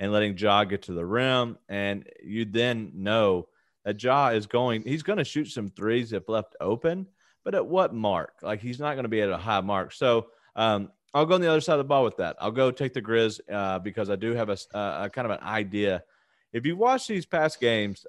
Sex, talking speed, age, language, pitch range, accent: male, 245 wpm, 30-49, English, 100-135 Hz, American